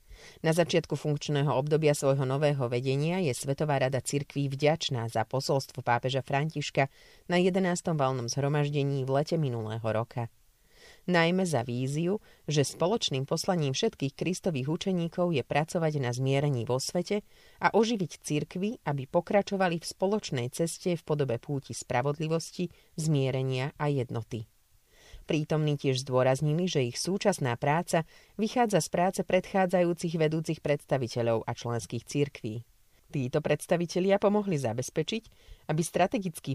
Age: 30-49